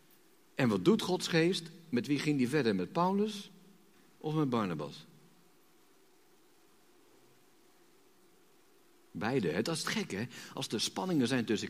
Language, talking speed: Dutch, 140 wpm